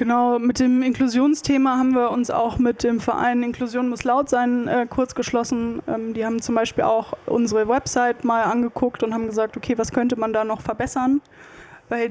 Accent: German